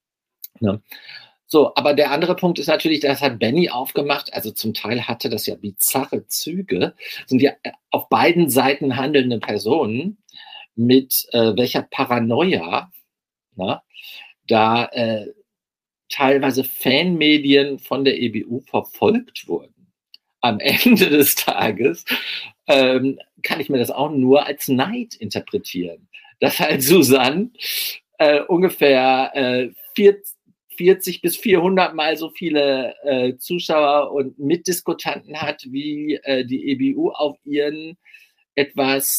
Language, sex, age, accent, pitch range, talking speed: German, male, 50-69, German, 135-180 Hz, 125 wpm